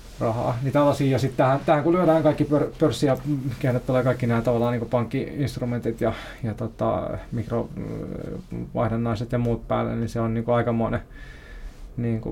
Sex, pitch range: male, 115-125 Hz